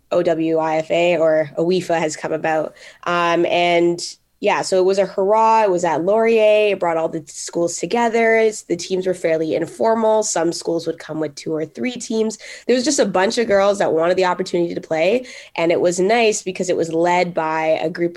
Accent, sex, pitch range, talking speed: American, female, 160-195 Hz, 210 wpm